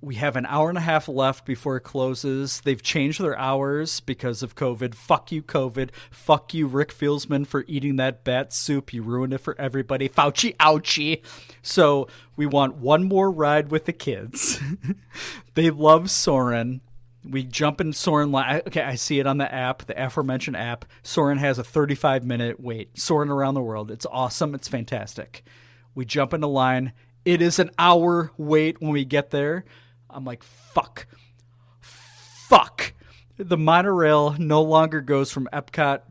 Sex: male